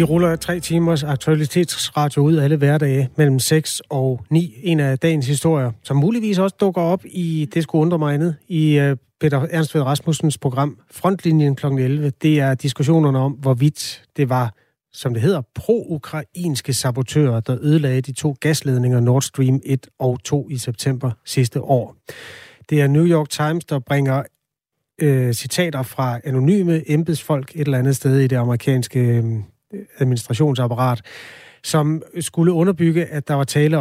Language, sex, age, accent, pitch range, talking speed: Danish, male, 30-49, native, 130-155 Hz, 155 wpm